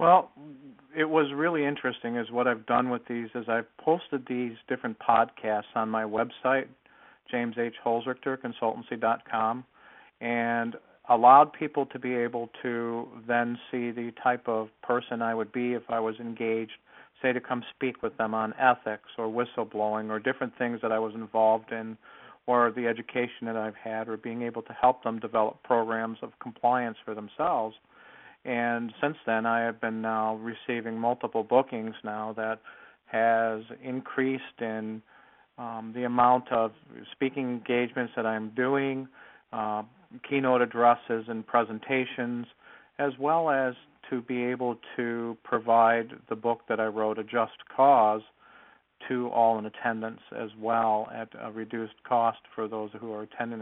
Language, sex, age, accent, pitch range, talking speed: English, male, 50-69, American, 110-125 Hz, 155 wpm